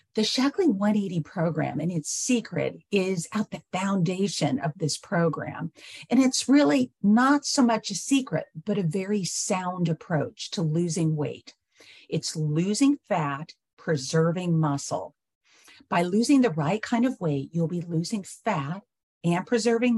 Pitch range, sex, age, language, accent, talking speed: 160-225 Hz, female, 50-69, English, American, 145 wpm